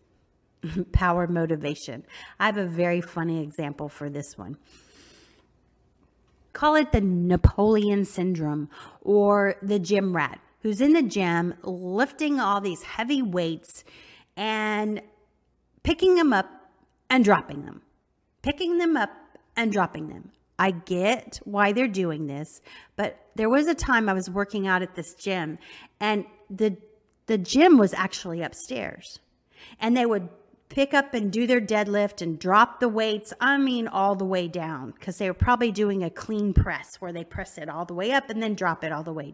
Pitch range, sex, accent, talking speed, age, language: 175-220 Hz, female, American, 165 wpm, 30-49, English